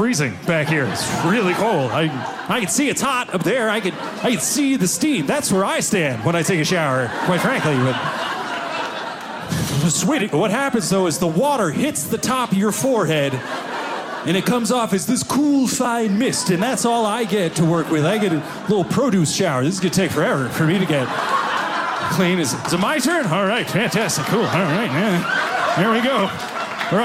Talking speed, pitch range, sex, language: 210 wpm, 170-250 Hz, male, English